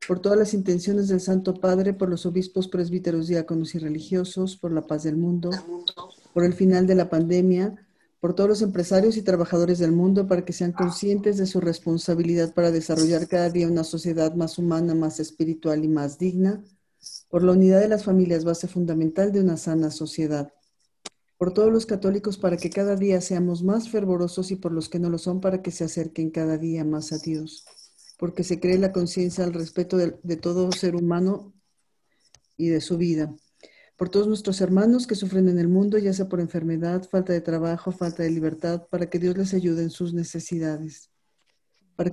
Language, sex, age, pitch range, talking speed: Spanish, female, 40-59, 165-190 Hz, 195 wpm